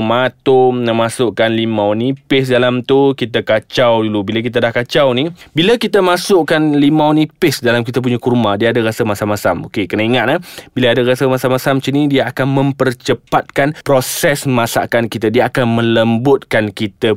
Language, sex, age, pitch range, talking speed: Malay, male, 20-39, 115-150 Hz, 170 wpm